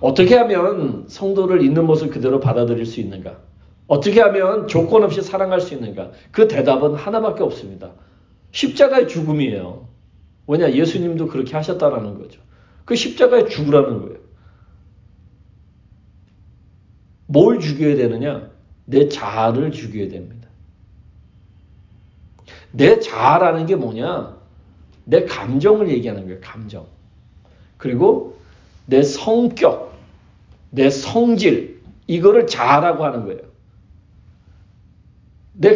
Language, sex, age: Korean, male, 40-59